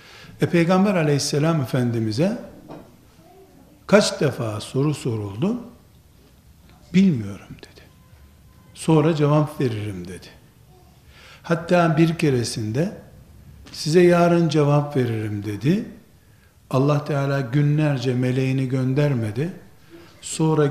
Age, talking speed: 60-79, 80 wpm